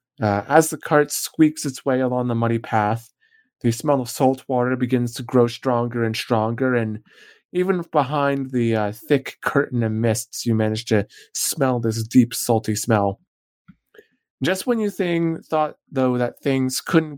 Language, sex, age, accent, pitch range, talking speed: English, male, 30-49, American, 115-145 Hz, 165 wpm